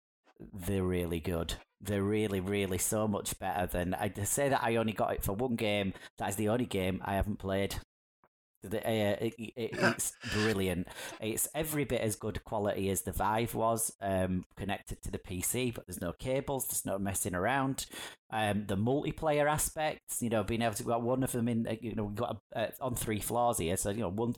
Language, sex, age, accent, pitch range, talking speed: English, male, 30-49, British, 100-120 Hz, 200 wpm